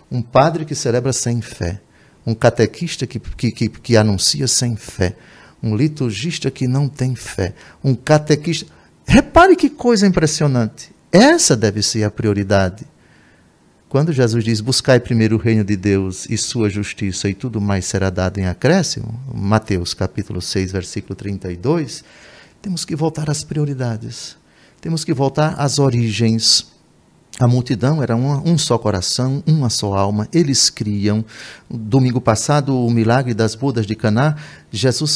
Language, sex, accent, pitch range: Portuguese, male, Brazilian, 105-145 Hz